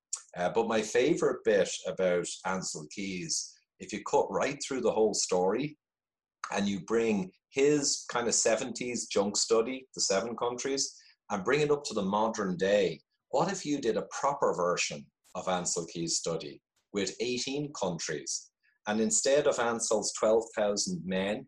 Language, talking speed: English, 155 wpm